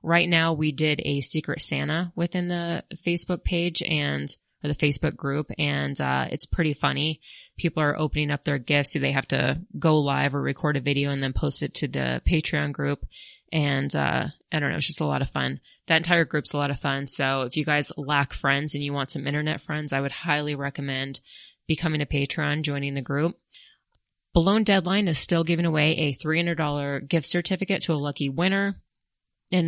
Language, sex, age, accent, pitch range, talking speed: English, female, 20-39, American, 145-170 Hz, 200 wpm